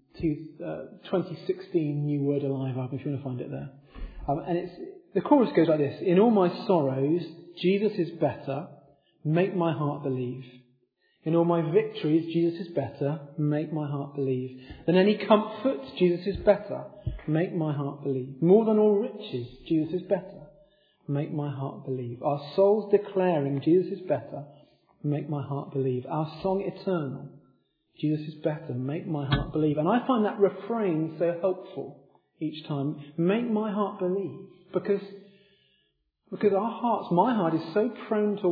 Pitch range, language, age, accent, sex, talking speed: 140-200 Hz, English, 40-59, British, male, 165 wpm